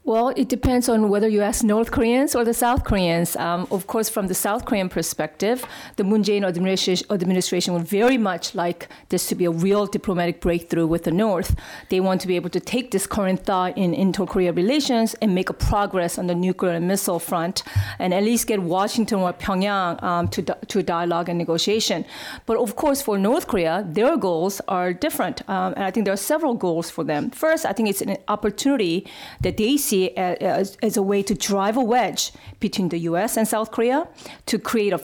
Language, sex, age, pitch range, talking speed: English, female, 40-59, 185-230 Hz, 210 wpm